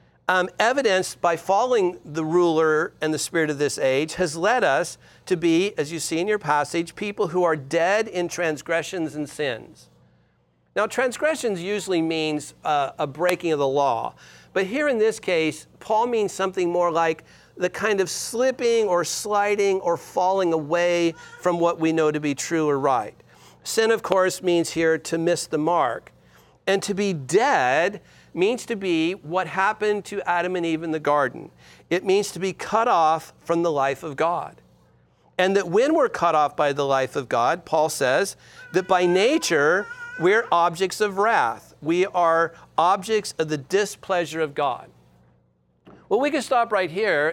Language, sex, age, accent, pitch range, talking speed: English, male, 50-69, American, 155-195 Hz, 175 wpm